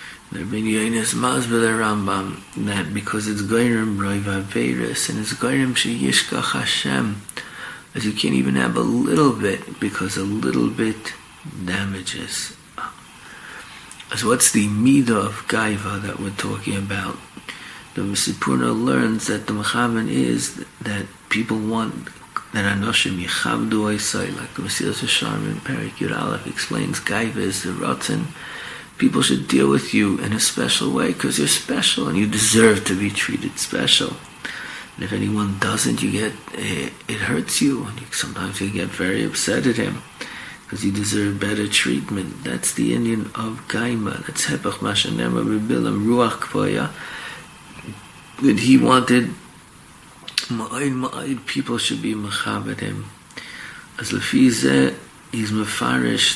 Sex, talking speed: male, 140 wpm